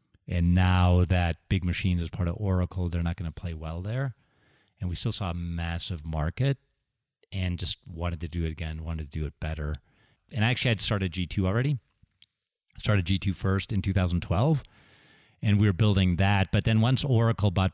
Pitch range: 90-110 Hz